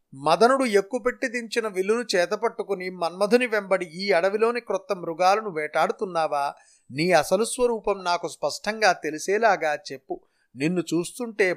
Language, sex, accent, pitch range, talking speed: Telugu, male, native, 170-205 Hz, 115 wpm